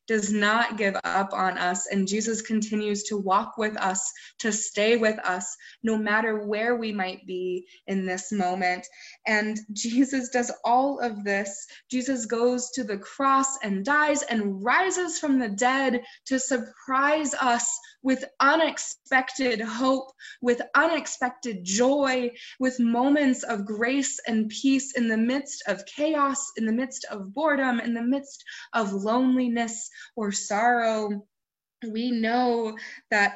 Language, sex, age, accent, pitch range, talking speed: English, female, 20-39, American, 215-260 Hz, 140 wpm